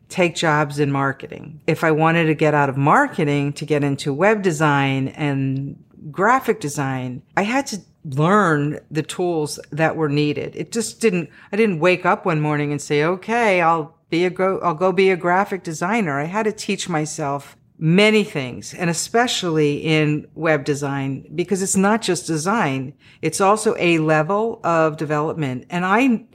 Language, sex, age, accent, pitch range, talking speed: English, female, 50-69, American, 145-185 Hz, 175 wpm